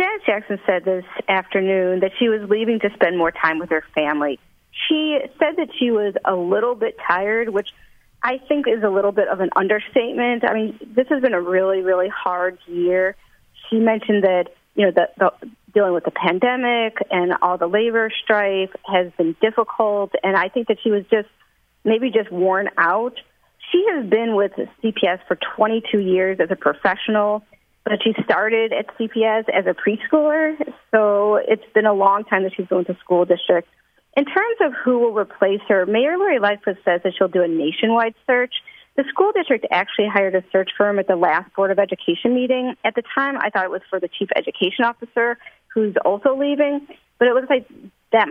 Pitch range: 190-245 Hz